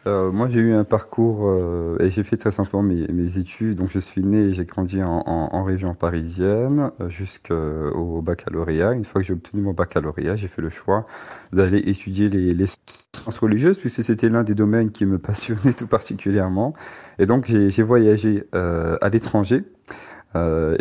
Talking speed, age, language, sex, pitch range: 195 wpm, 30-49, French, male, 90-110 Hz